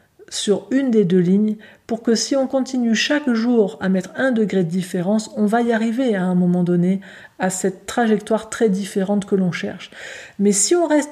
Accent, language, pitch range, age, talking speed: French, French, 200-245 Hz, 50-69, 205 wpm